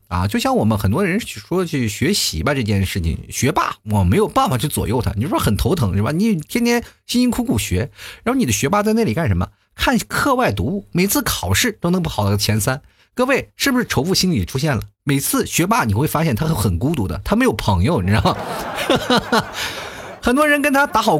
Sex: male